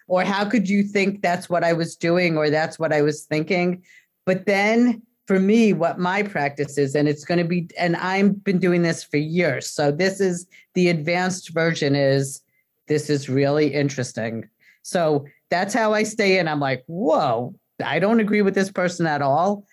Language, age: English, 40-59